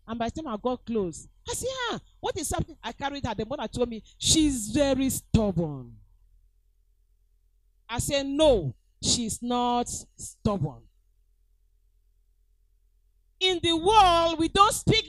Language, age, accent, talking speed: English, 40-59, Nigerian, 140 wpm